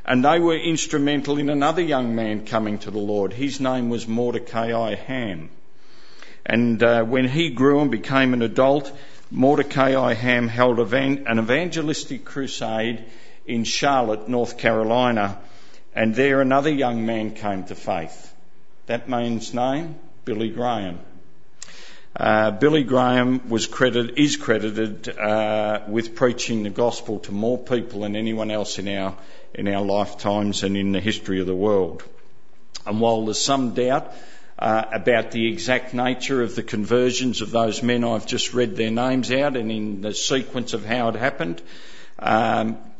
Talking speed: 155 wpm